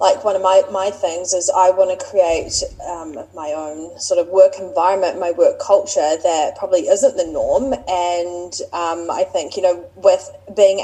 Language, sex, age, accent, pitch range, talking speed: English, female, 20-39, Australian, 180-255 Hz, 190 wpm